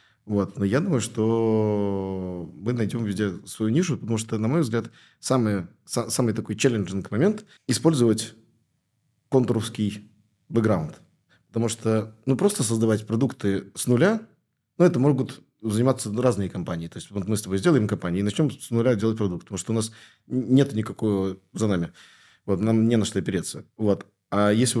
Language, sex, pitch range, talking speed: Russian, male, 100-120 Hz, 165 wpm